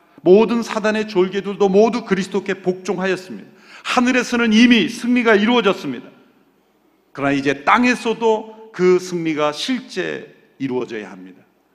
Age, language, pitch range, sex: 40-59, Korean, 160-220 Hz, male